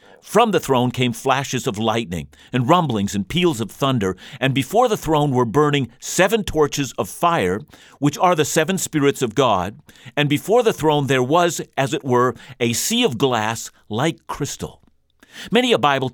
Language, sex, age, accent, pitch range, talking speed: English, male, 50-69, American, 125-170 Hz, 180 wpm